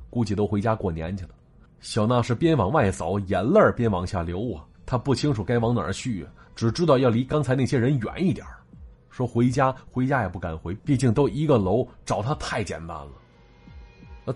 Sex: male